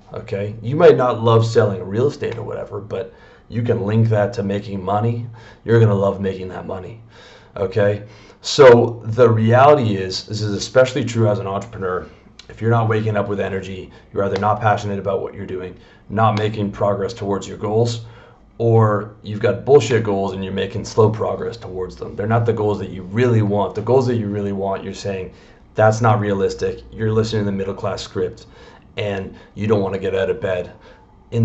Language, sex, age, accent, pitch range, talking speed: English, male, 30-49, American, 100-115 Hz, 200 wpm